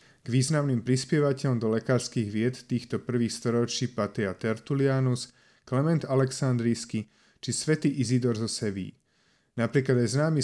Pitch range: 115-135 Hz